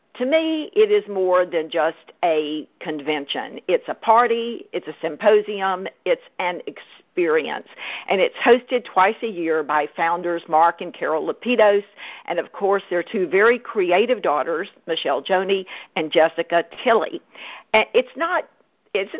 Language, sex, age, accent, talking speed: English, female, 50-69, American, 140 wpm